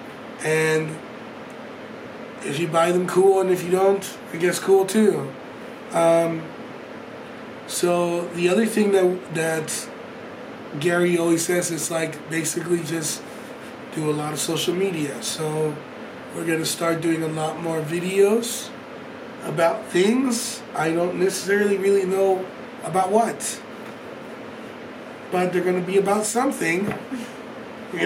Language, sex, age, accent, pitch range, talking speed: English, male, 20-39, American, 165-225 Hz, 125 wpm